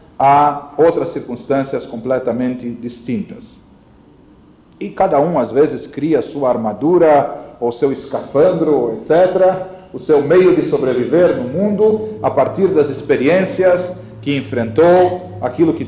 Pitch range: 140-195 Hz